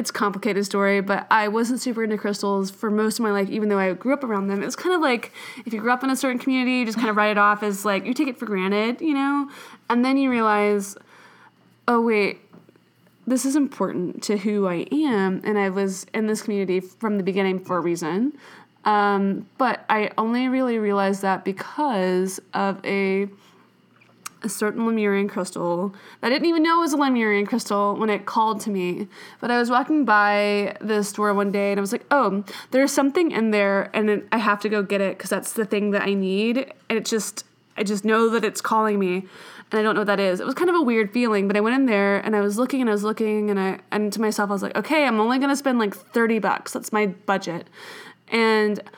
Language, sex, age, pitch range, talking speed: English, female, 20-39, 200-240 Hz, 240 wpm